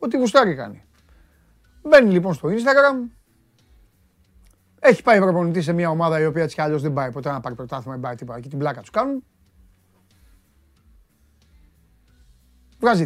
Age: 30-49